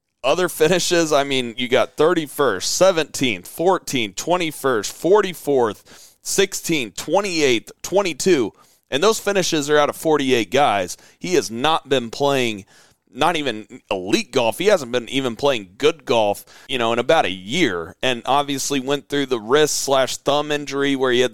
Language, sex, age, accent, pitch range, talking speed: English, male, 30-49, American, 130-155 Hz, 155 wpm